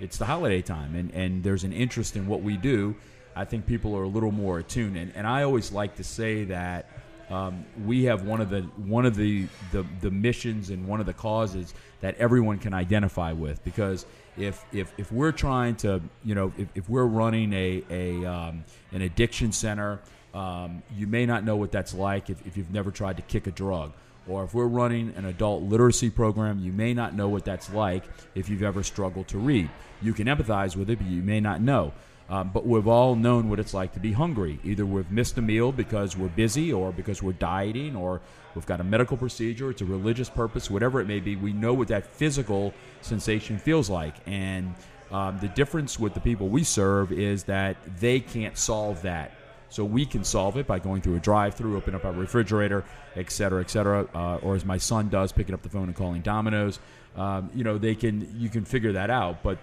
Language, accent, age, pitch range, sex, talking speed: English, American, 40-59, 95-115 Hz, male, 220 wpm